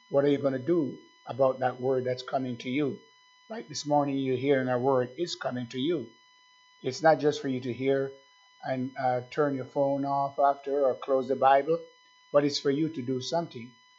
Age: 50-69